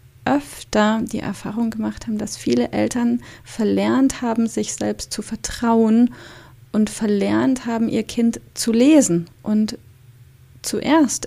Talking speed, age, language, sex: 120 wpm, 30-49, German, female